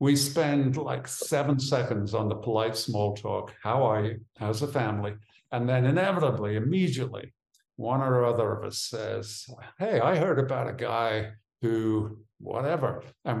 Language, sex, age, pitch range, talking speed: English, male, 50-69, 110-135 Hz, 155 wpm